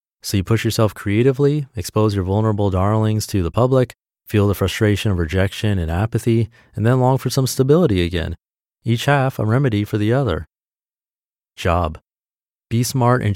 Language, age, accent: English, 30-49, American